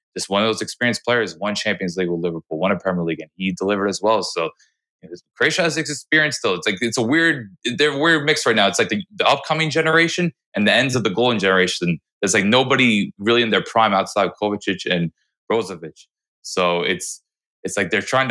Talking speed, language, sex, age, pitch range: 225 wpm, English, male, 20-39, 95-120 Hz